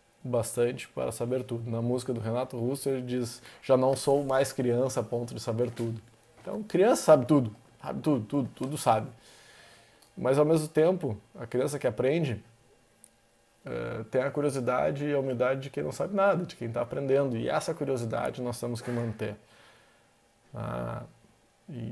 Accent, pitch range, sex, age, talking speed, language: Brazilian, 115-135 Hz, male, 20-39, 170 wpm, Portuguese